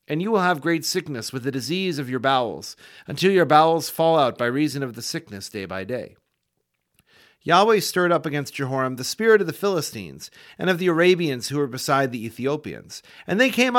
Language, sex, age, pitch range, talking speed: English, male, 40-59, 125-175 Hz, 205 wpm